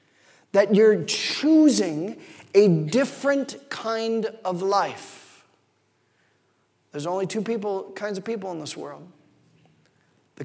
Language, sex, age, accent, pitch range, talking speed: English, male, 40-59, American, 175-255 Hz, 110 wpm